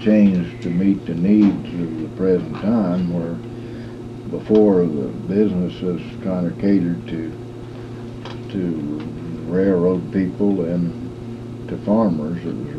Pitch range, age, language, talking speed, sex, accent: 85-120 Hz, 60-79, English, 115 wpm, male, American